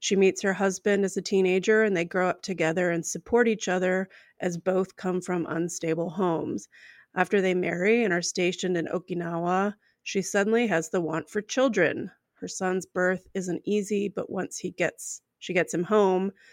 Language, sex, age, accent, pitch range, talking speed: English, female, 30-49, American, 170-200 Hz, 175 wpm